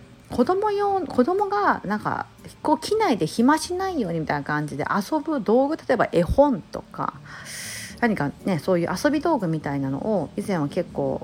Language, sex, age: Japanese, female, 40-59